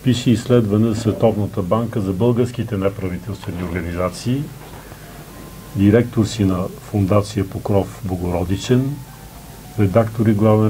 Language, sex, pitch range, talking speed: Bulgarian, male, 100-120 Hz, 100 wpm